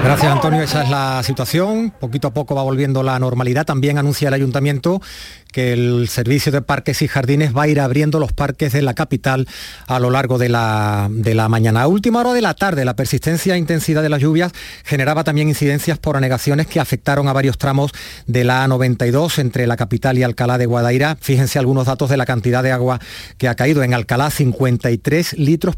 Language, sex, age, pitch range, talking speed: Spanish, male, 40-59, 125-155 Hz, 205 wpm